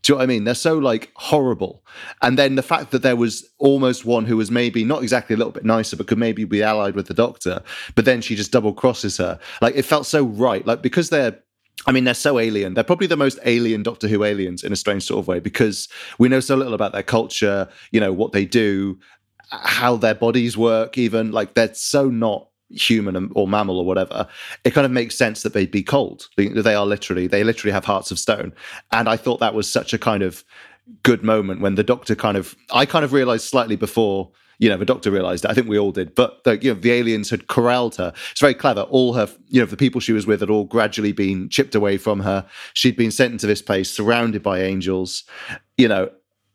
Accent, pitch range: British, 100-125 Hz